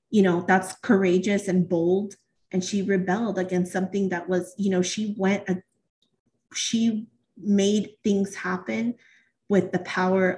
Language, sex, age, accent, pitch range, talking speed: English, female, 30-49, American, 185-220 Hz, 140 wpm